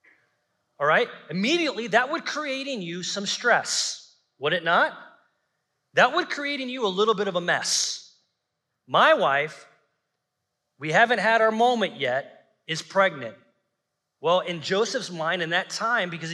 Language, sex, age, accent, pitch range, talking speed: English, male, 30-49, American, 185-270 Hz, 155 wpm